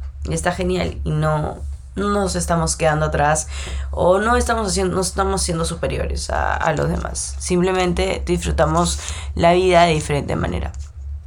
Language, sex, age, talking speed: Spanish, female, 20-39, 150 wpm